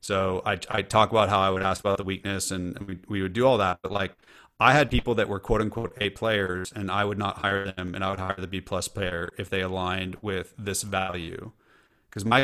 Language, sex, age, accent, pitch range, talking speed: English, male, 30-49, American, 95-125 Hz, 250 wpm